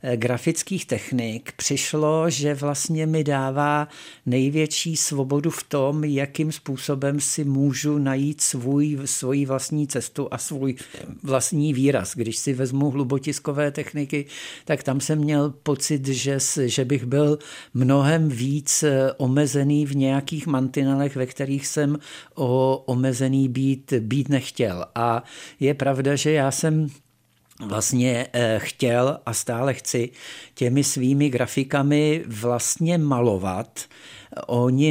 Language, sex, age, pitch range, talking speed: Czech, male, 60-79, 125-145 Hz, 115 wpm